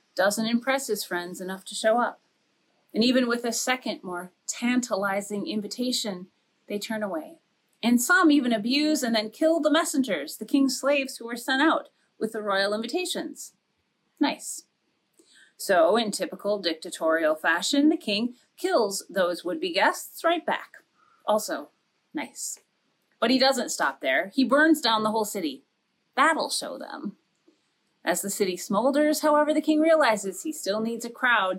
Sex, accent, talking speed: female, American, 155 wpm